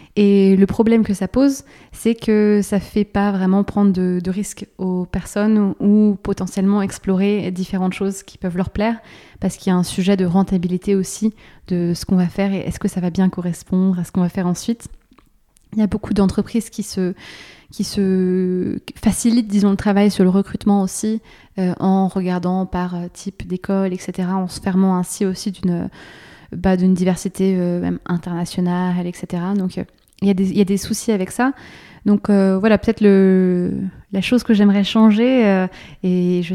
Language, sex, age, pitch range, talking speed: French, female, 20-39, 185-210 Hz, 195 wpm